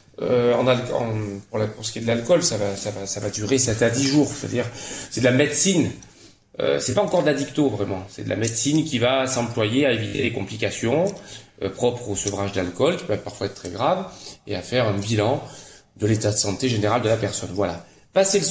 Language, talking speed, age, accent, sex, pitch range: French, 235 wpm, 30-49, French, male, 100-130 Hz